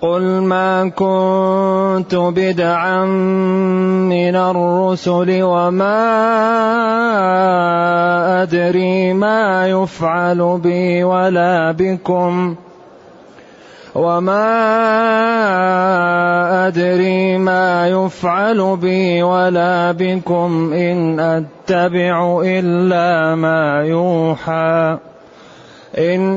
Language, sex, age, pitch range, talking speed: Arabic, male, 30-49, 175-185 Hz, 50 wpm